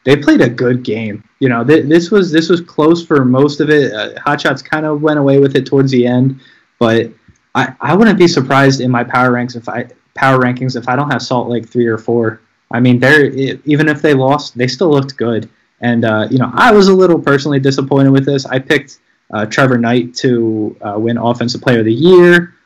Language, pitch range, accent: English, 120-150 Hz, American